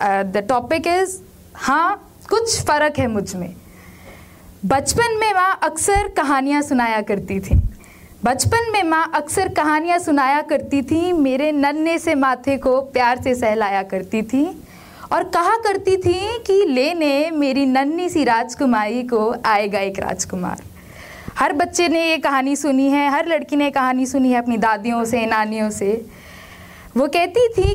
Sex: female